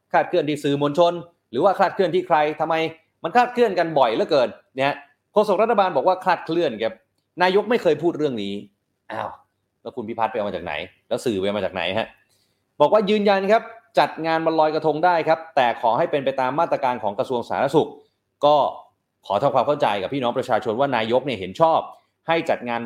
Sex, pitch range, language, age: male, 115-175 Hz, Thai, 30-49